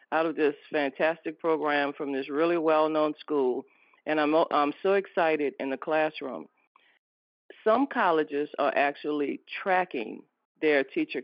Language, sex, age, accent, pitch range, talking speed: English, female, 40-59, American, 160-215 Hz, 135 wpm